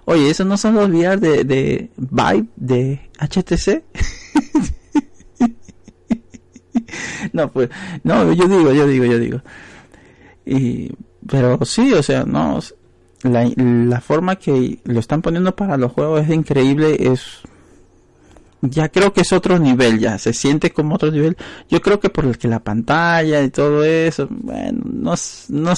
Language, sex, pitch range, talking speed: Spanish, male, 120-175 Hz, 150 wpm